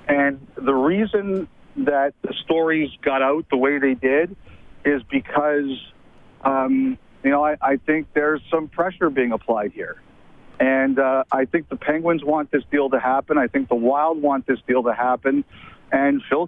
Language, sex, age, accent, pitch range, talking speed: English, male, 50-69, American, 135-160 Hz, 175 wpm